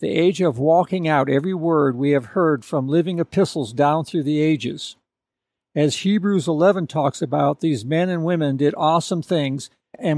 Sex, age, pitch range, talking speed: male, 60-79, 140-170 Hz, 175 wpm